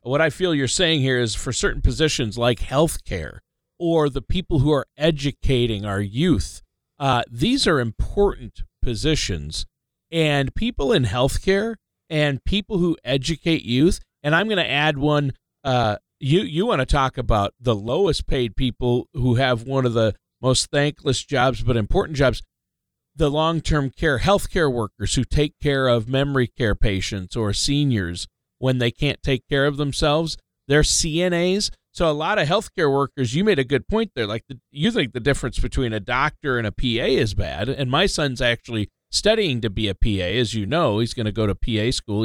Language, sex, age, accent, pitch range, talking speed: English, male, 40-59, American, 110-150 Hz, 185 wpm